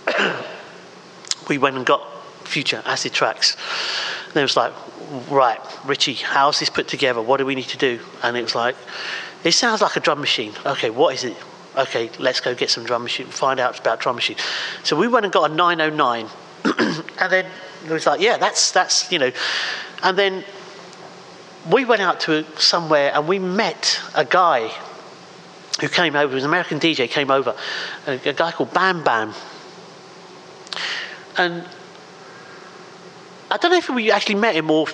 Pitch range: 155-200 Hz